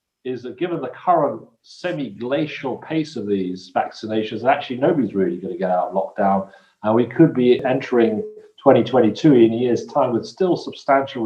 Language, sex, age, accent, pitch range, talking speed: English, male, 40-59, British, 115-145 Hz, 175 wpm